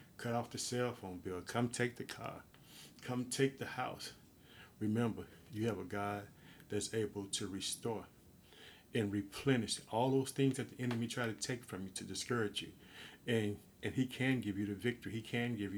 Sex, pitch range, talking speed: male, 100-115 Hz, 190 wpm